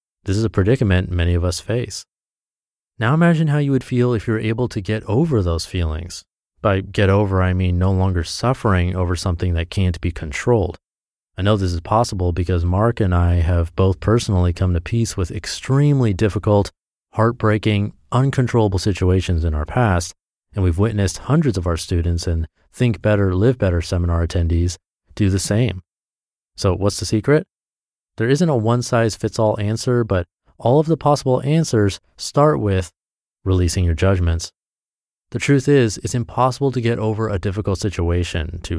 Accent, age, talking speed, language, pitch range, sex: American, 30-49, 170 wpm, English, 90-120 Hz, male